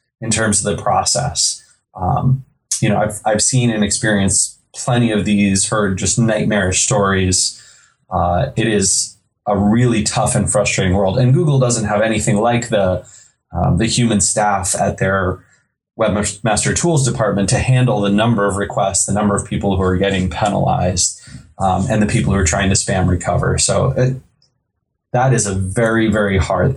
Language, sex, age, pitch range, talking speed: English, male, 20-39, 100-125 Hz, 175 wpm